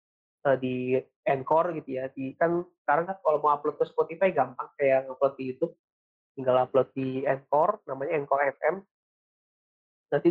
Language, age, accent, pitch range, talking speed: Indonesian, 20-39, native, 135-160 Hz, 145 wpm